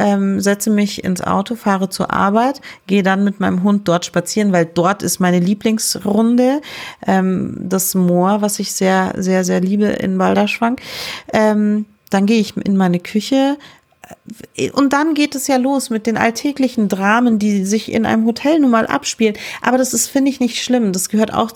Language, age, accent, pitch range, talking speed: German, 40-59, German, 190-230 Hz, 175 wpm